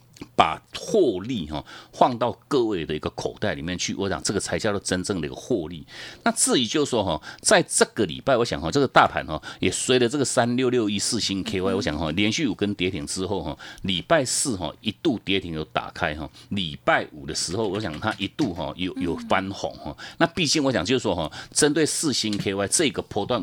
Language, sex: Chinese, male